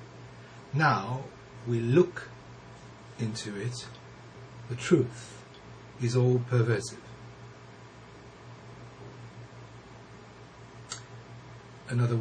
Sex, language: male, English